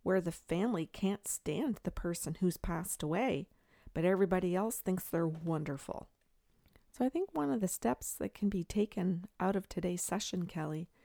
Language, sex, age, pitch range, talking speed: English, female, 40-59, 160-195 Hz, 175 wpm